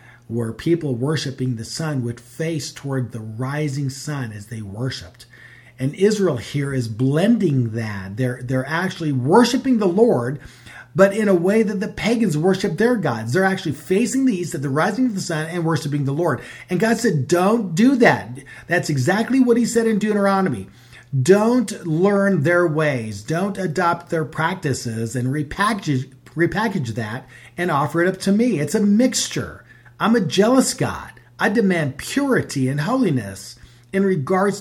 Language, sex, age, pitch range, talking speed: English, male, 40-59, 120-190 Hz, 165 wpm